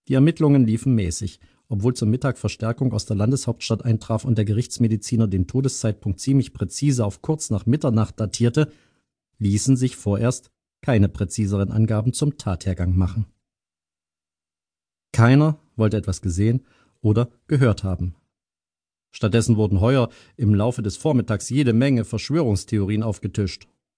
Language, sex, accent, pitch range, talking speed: German, male, German, 100-130 Hz, 130 wpm